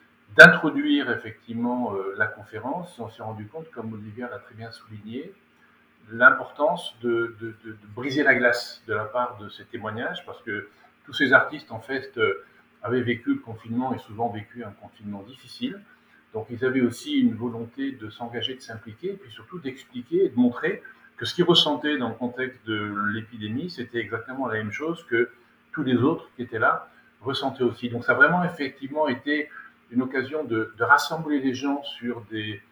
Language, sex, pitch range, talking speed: French, male, 110-140 Hz, 185 wpm